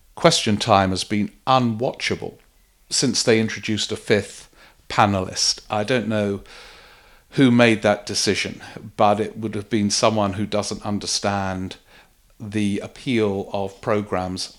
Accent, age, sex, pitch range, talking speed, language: British, 50-69, male, 100-115 Hz, 130 wpm, English